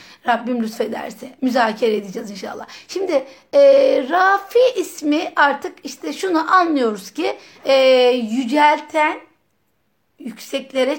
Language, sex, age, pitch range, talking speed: Turkish, female, 60-79, 235-325 Hz, 95 wpm